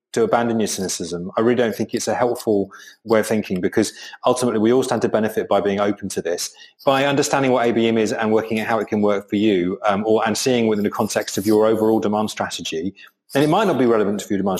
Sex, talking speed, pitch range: male, 250 wpm, 105-125 Hz